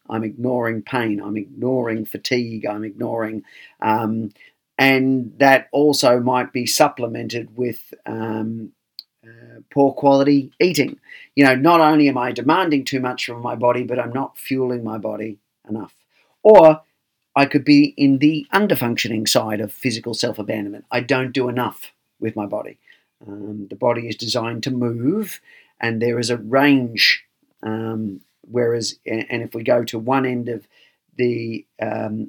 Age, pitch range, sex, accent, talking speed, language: 40-59, 110-135 Hz, male, Australian, 155 wpm, English